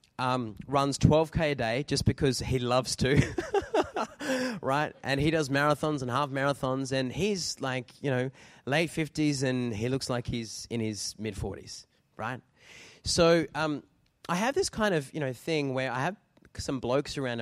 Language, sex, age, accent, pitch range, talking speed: English, male, 20-39, Australian, 125-175 Hz, 175 wpm